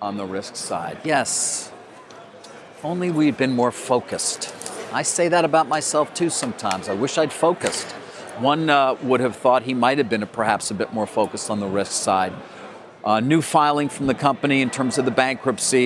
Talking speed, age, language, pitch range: 195 wpm, 40-59, English, 110-135 Hz